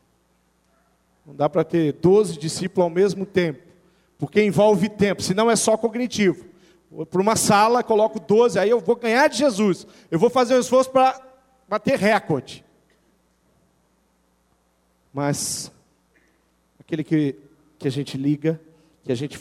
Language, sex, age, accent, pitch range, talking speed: Portuguese, male, 40-59, Brazilian, 140-215 Hz, 140 wpm